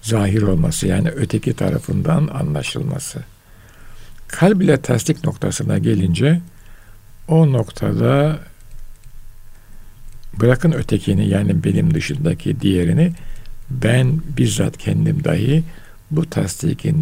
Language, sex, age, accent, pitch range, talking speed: Turkish, male, 60-79, native, 105-155 Hz, 90 wpm